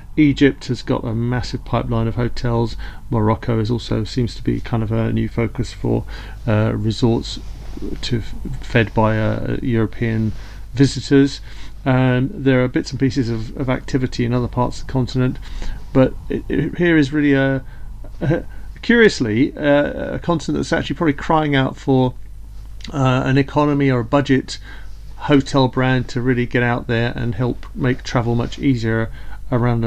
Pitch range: 115-135 Hz